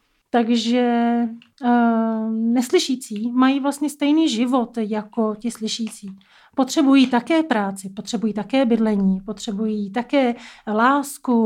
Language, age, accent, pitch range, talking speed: Czech, 30-49, native, 225-265 Hz, 95 wpm